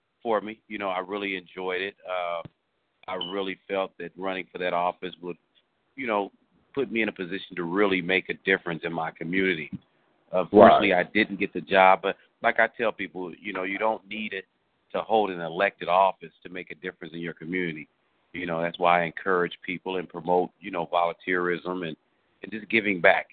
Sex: male